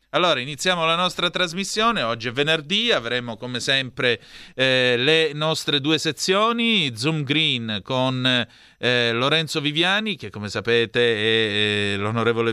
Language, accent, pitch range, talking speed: Italian, native, 115-160 Hz, 135 wpm